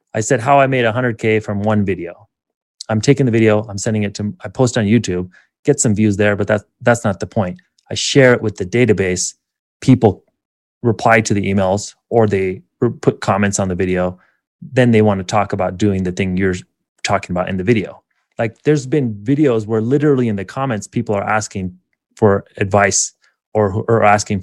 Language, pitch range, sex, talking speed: English, 100-120 Hz, male, 200 wpm